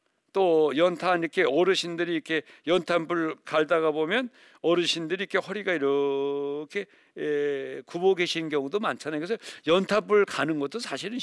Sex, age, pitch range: male, 60-79, 135-195 Hz